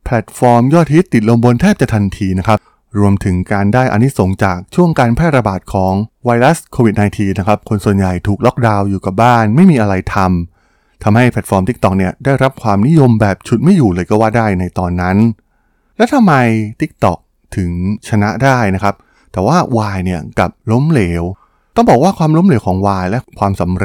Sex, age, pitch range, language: male, 20-39, 95-130 Hz, Thai